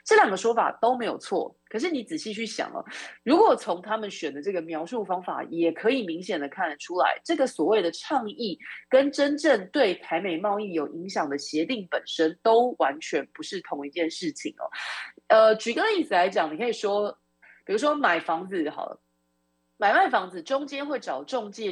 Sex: female